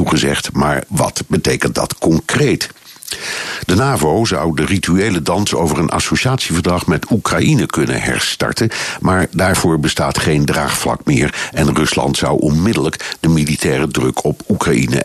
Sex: male